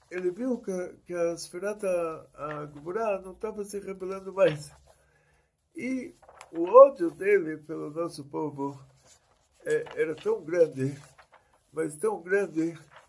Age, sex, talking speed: 60-79, male, 120 wpm